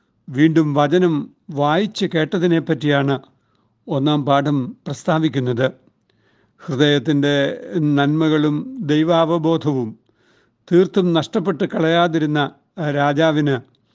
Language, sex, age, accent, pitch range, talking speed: Malayalam, male, 60-79, native, 140-170 Hz, 60 wpm